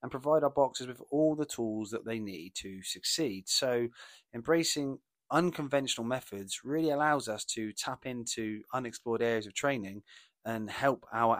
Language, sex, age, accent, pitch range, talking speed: English, male, 30-49, British, 115-150 Hz, 160 wpm